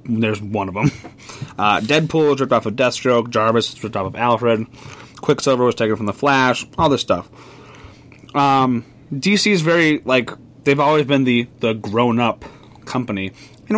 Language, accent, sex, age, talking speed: English, American, male, 30-49, 160 wpm